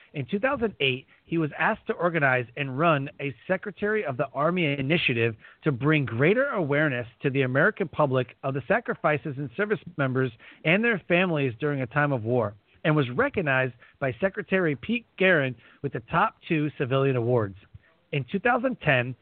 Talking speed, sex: 160 wpm, male